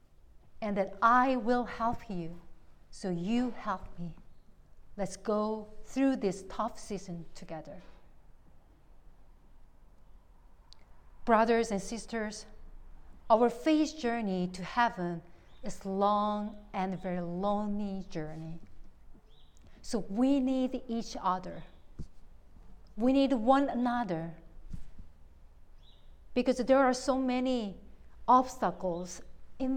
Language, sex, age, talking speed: English, female, 40-59, 95 wpm